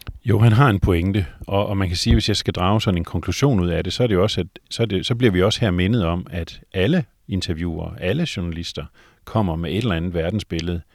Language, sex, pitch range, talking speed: Danish, male, 85-110 Hz, 225 wpm